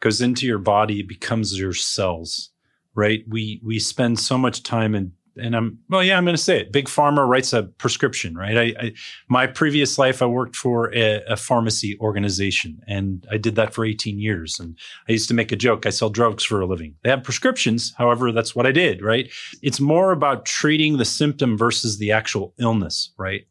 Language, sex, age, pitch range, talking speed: English, male, 30-49, 110-135 Hz, 210 wpm